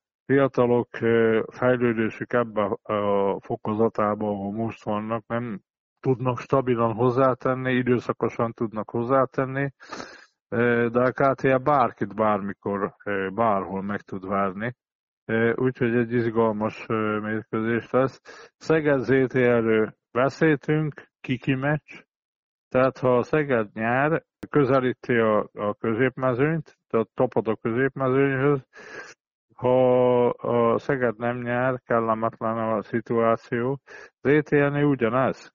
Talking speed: 95 wpm